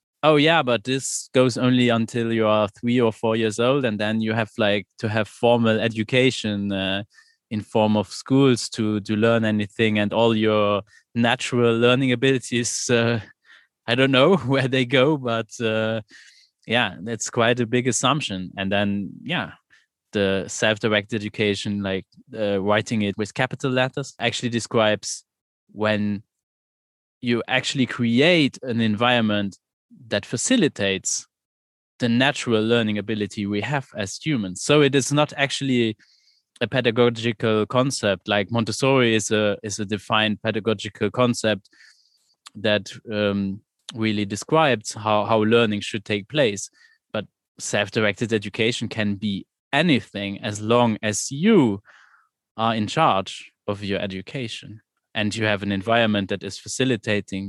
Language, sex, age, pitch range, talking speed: German, male, 20-39, 105-125 Hz, 140 wpm